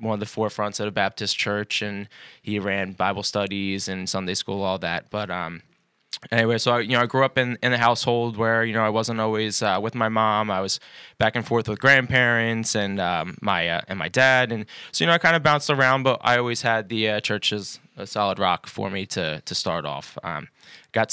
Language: English